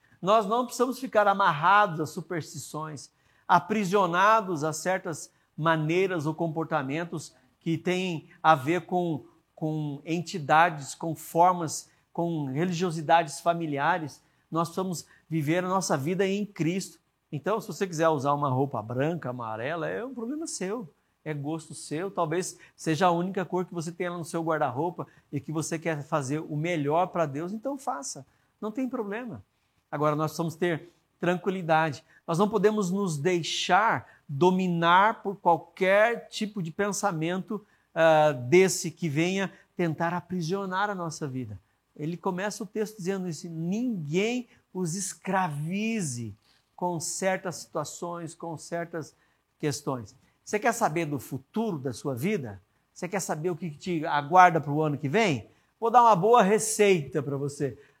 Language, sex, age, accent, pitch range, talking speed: Portuguese, male, 50-69, Brazilian, 155-190 Hz, 145 wpm